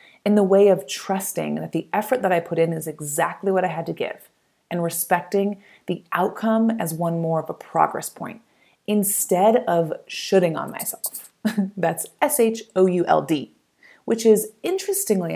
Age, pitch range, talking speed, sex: 30-49, 170-225 Hz, 155 wpm, female